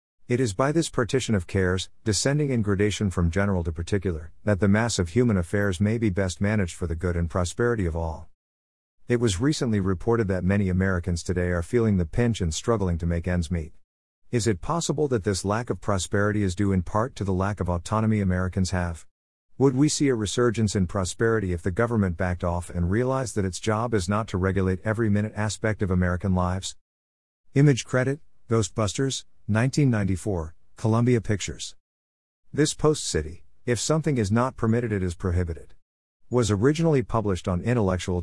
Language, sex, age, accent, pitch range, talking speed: English, male, 50-69, American, 90-115 Hz, 185 wpm